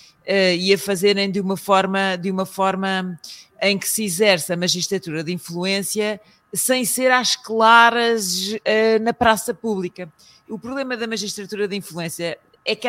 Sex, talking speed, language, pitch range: female, 140 wpm, Portuguese, 165-205 Hz